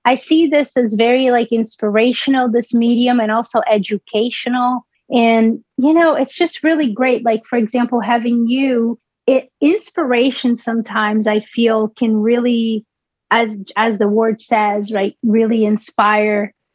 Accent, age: American, 30-49